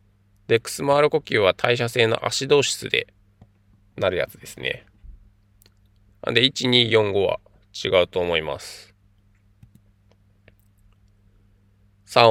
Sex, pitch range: male, 100-110 Hz